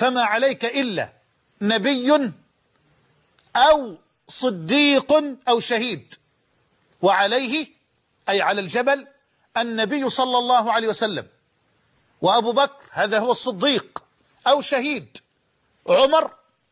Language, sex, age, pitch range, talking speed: Arabic, male, 50-69, 225-275 Hz, 90 wpm